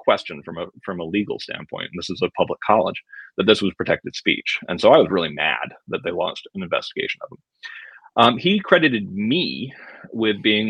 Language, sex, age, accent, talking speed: English, male, 30-49, American, 210 wpm